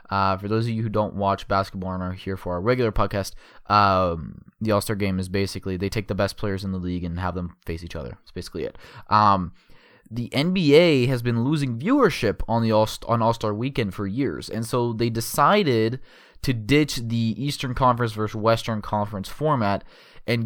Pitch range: 100-120 Hz